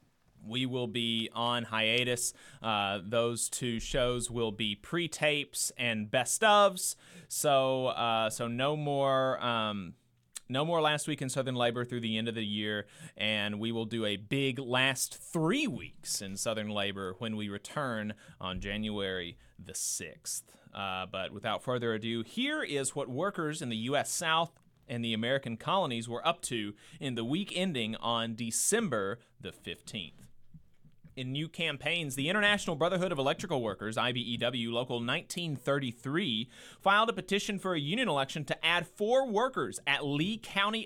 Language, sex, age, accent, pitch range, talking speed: English, male, 30-49, American, 115-165 Hz, 155 wpm